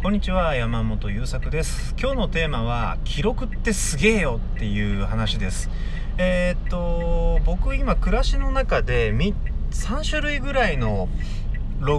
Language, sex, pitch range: Japanese, male, 100-165 Hz